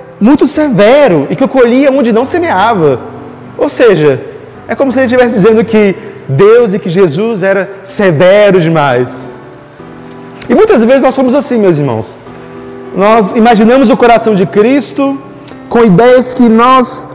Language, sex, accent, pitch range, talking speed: Portuguese, male, Brazilian, 195-265 Hz, 150 wpm